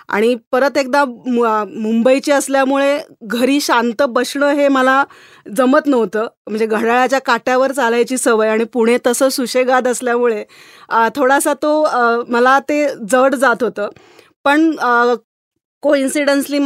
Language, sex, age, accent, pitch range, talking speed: Marathi, female, 20-39, native, 235-290 Hz, 115 wpm